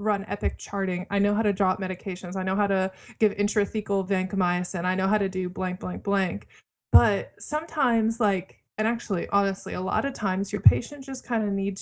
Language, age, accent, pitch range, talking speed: English, 20-39, American, 185-215 Hz, 205 wpm